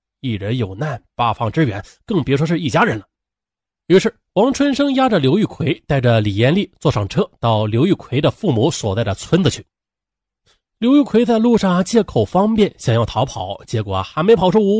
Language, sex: Chinese, male